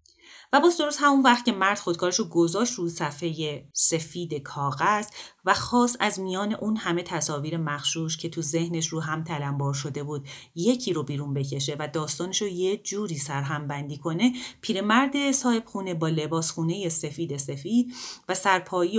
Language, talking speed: Persian, 155 wpm